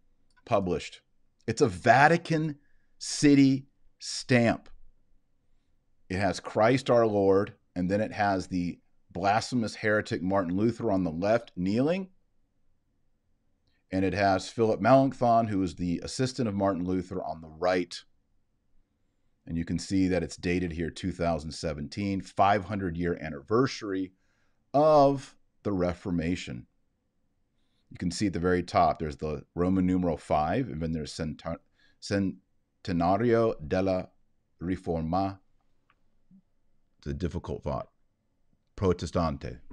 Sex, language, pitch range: male, English, 85-105 Hz